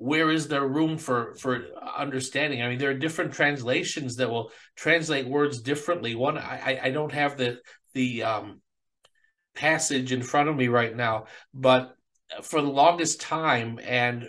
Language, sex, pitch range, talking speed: English, male, 130-160 Hz, 165 wpm